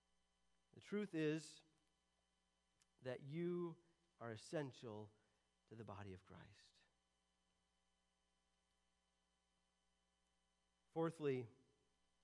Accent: American